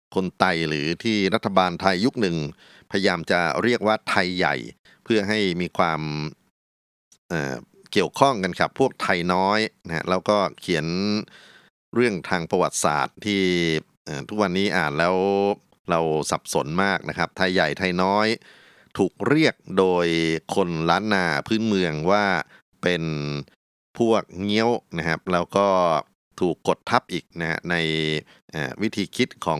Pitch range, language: 80-100 Hz, Thai